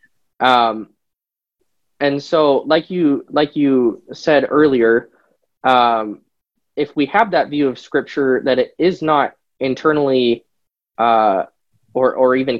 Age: 20-39